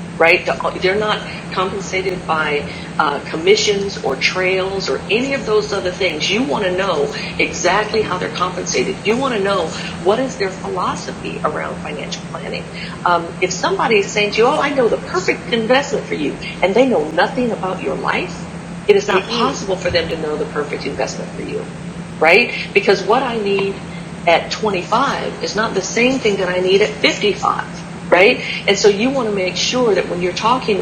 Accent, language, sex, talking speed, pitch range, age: American, English, female, 190 wpm, 175-210 Hz, 50-69